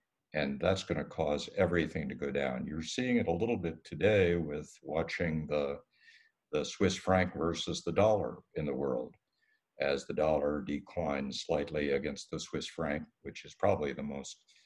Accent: American